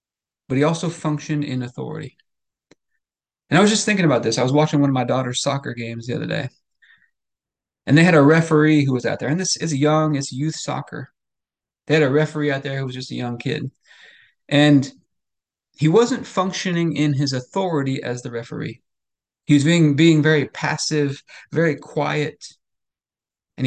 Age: 30-49